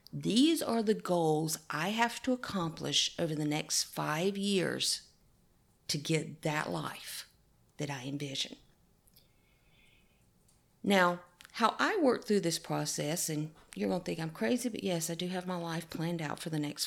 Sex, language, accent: female, English, American